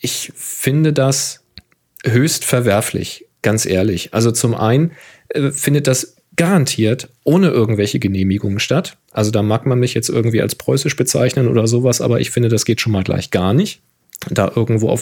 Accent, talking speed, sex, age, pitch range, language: German, 170 wpm, male, 40-59, 110-130 Hz, German